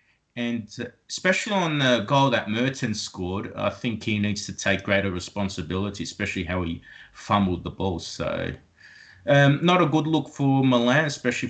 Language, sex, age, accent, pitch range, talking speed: English, male, 30-49, Australian, 95-125 Hz, 160 wpm